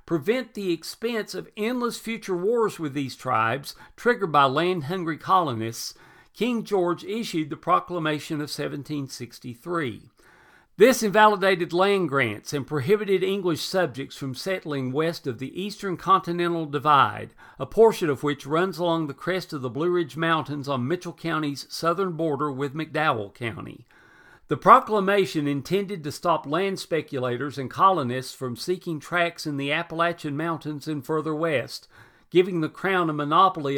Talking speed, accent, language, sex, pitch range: 145 wpm, American, English, male, 140-185 Hz